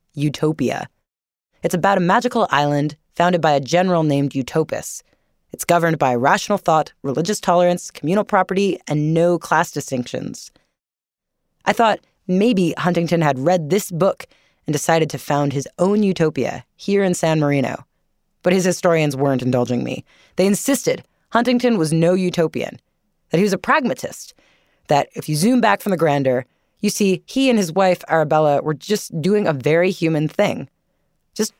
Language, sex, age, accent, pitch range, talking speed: English, female, 20-39, American, 145-195 Hz, 160 wpm